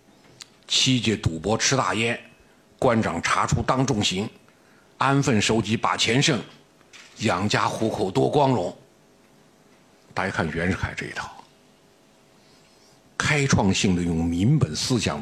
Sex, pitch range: male, 100-130 Hz